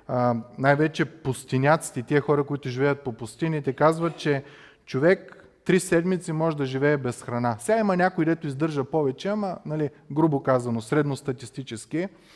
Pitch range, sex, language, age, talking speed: 130-170 Hz, male, Bulgarian, 30-49, 140 wpm